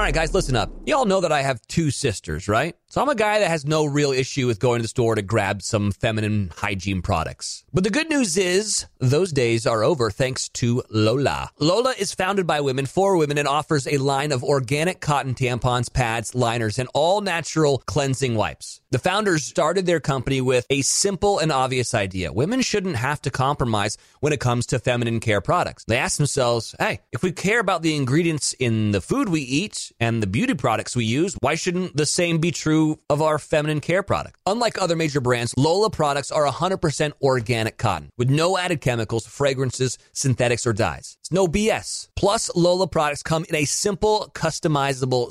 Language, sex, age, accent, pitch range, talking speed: English, male, 30-49, American, 125-175 Hz, 200 wpm